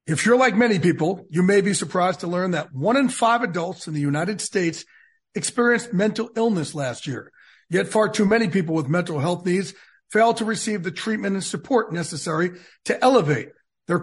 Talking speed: 195 wpm